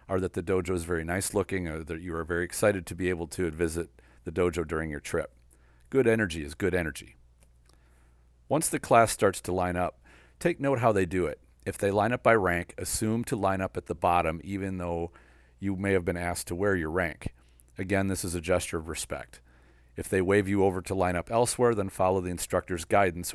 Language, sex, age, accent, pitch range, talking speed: English, male, 40-59, American, 70-95 Hz, 220 wpm